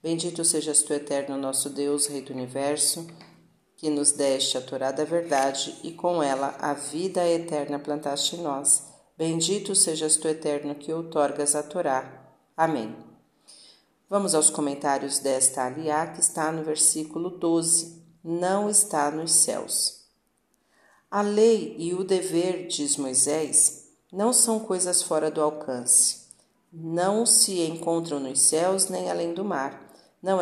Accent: Brazilian